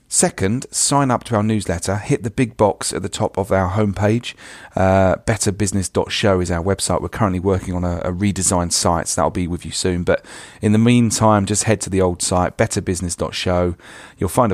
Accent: British